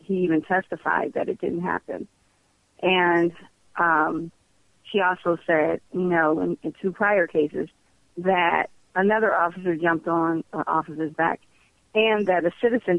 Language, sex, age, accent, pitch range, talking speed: English, female, 40-59, American, 170-195 Hz, 150 wpm